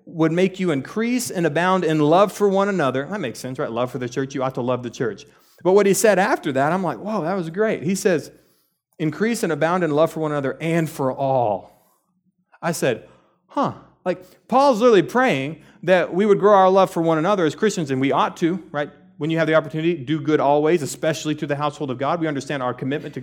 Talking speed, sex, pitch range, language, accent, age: 240 wpm, male, 130-185 Hz, English, American, 30-49